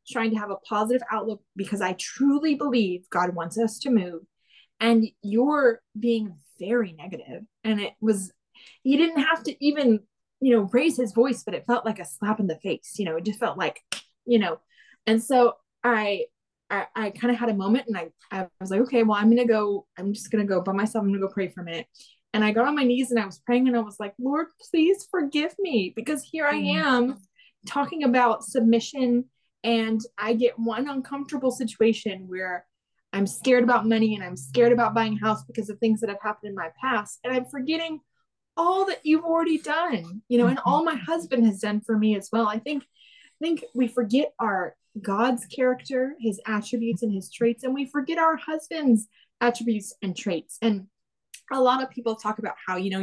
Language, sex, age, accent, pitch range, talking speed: English, female, 20-39, American, 210-260 Hz, 215 wpm